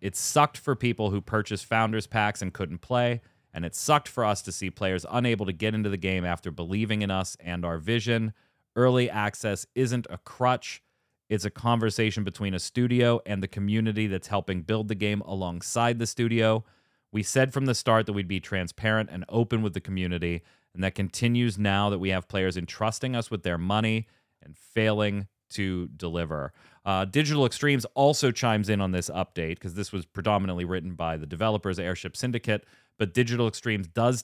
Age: 30-49